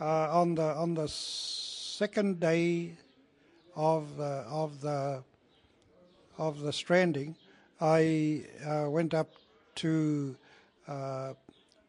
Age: 60-79